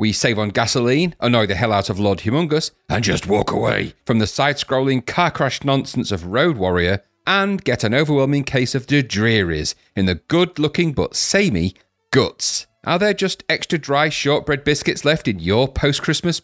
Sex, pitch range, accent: male, 105-155 Hz, British